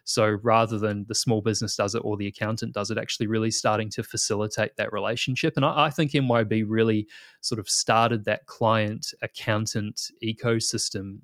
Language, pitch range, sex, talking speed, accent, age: English, 105-120 Hz, male, 175 wpm, Australian, 20-39